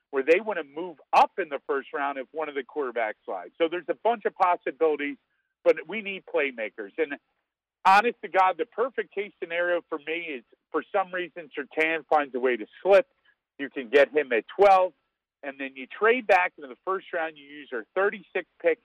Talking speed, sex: 210 wpm, male